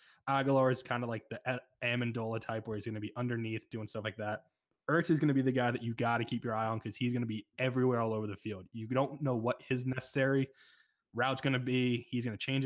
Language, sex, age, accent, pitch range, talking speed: English, male, 20-39, American, 115-135 Hz, 270 wpm